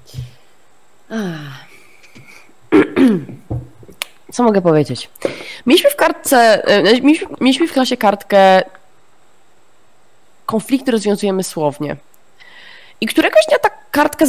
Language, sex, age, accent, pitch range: Polish, female, 20-39, native, 185-285 Hz